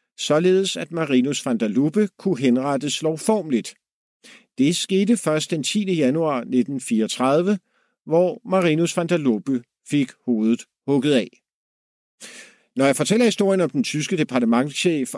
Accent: native